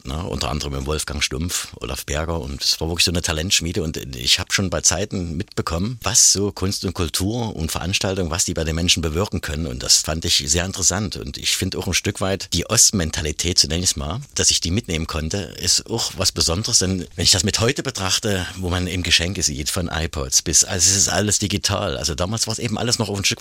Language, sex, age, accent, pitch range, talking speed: German, male, 50-69, German, 80-105 Hz, 240 wpm